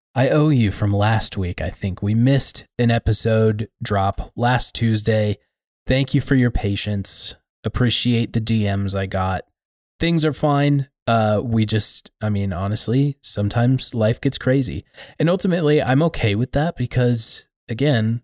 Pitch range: 100-130 Hz